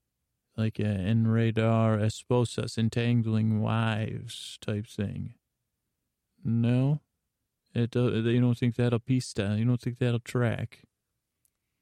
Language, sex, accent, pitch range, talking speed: English, male, American, 110-125 Hz, 115 wpm